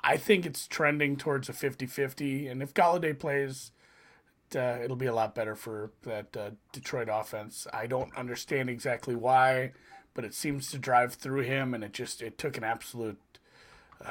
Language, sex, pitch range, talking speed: English, male, 120-170 Hz, 175 wpm